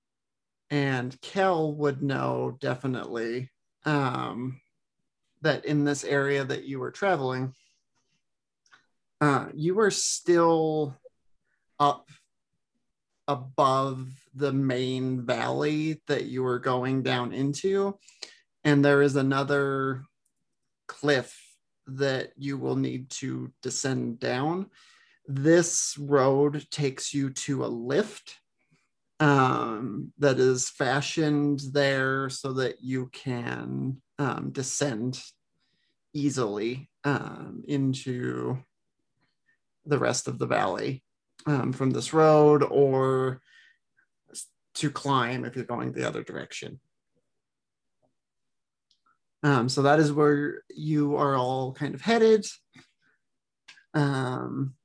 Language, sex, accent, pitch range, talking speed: English, male, American, 130-145 Hz, 100 wpm